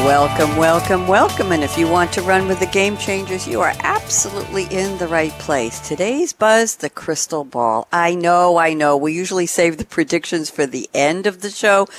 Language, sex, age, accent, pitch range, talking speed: English, female, 60-79, American, 140-190 Hz, 200 wpm